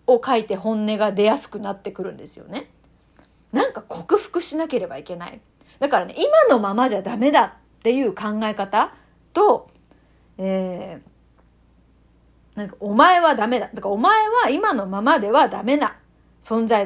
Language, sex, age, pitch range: Japanese, female, 30-49, 215-360 Hz